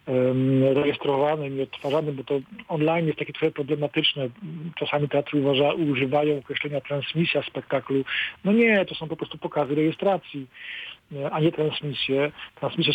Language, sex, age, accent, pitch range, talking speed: Polish, male, 50-69, native, 145-180 Hz, 125 wpm